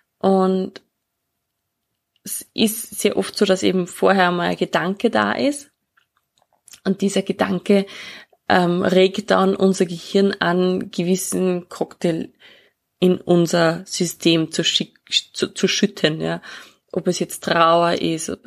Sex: female